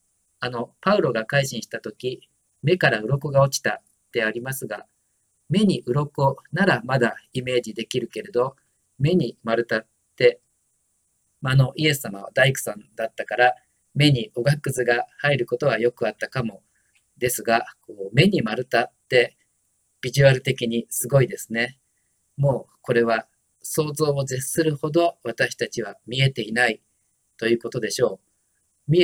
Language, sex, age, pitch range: Japanese, male, 40-59, 115-140 Hz